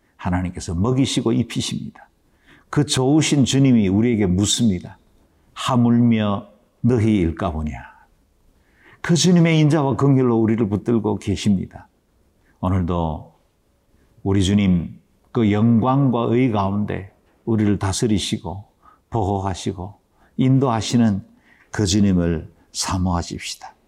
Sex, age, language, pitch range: male, 50-69, Korean, 90-120 Hz